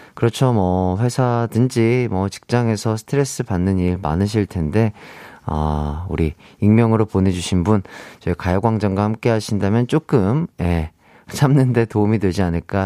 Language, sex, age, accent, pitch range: Korean, male, 40-59, native, 100-140 Hz